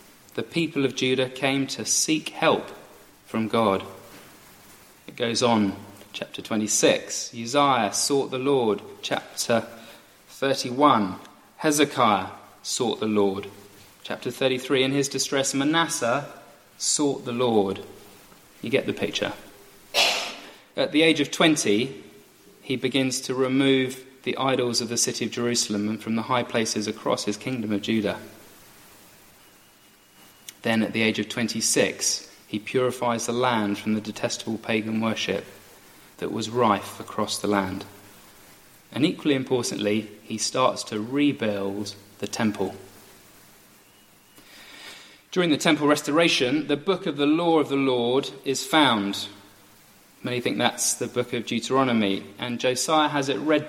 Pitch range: 100-130 Hz